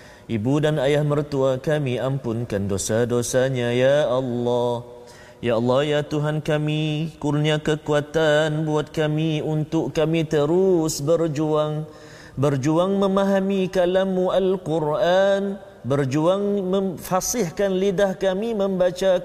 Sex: male